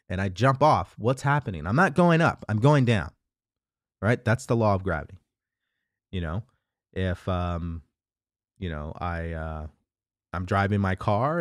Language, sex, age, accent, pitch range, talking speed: English, male, 30-49, American, 95-120 Hz, 165 wpm